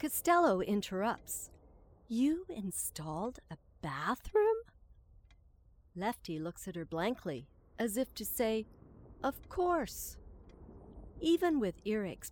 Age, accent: 50-69, American